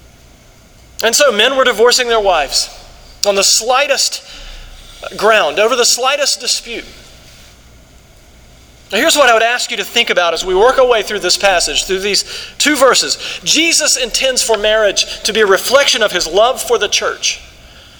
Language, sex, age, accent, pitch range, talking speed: English, male, 40-59, American, 190-265 Hz, 170 wpm